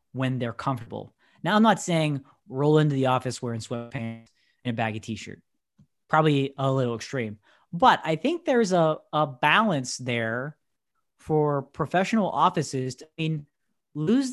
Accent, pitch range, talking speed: American, 130-185 Hz, 150 wpm